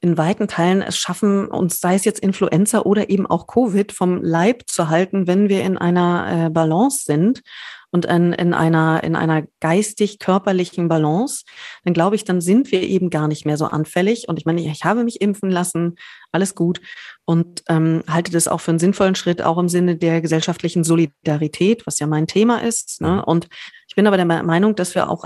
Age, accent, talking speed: 30-49, German, 200 wpm